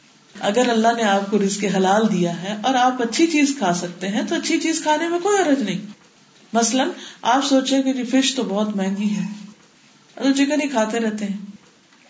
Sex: female